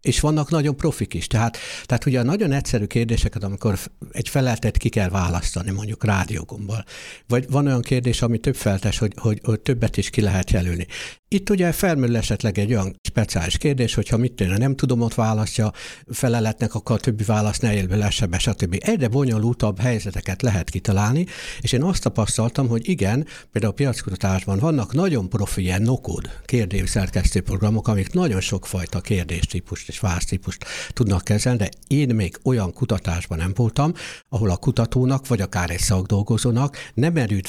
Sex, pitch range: male, 100-130 Hz